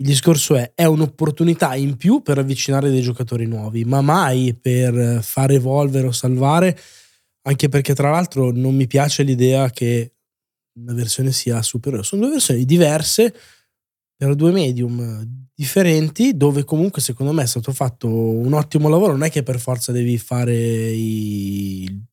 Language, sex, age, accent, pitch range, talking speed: Italian, male, 20-39, native, 130-165 Hz, 160 wpm